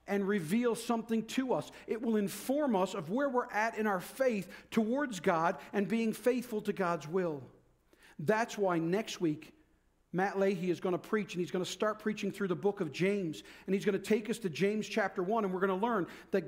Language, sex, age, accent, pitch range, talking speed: English, male, 50-69, American, 185-230 Hz, 220 wpm